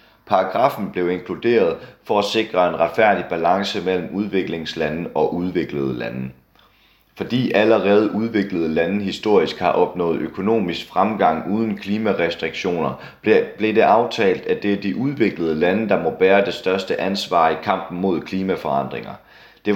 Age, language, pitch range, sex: 30-49, Danish, 90-105 Hz, male